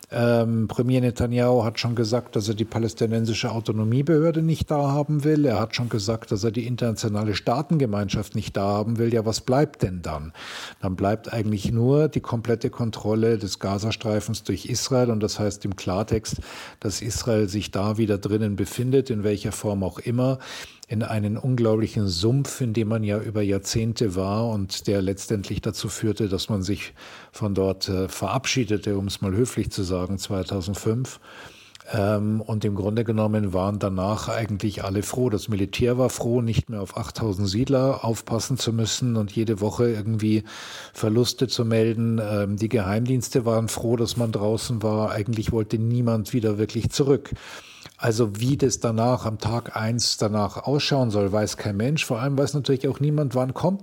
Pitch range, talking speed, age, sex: 105-125 Hz, 170 wpm, 50-69, male